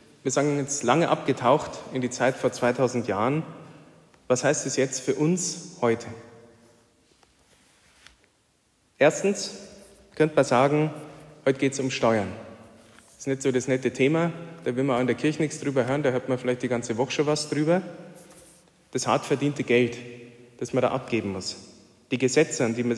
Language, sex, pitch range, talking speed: German, male, 120-150 Hz, 180 wpm